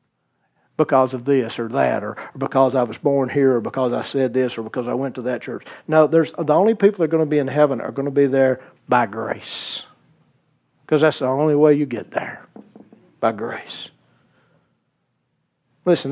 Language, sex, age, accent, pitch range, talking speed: English, male, 50-69, American, 140-195 Hz, 195 wpm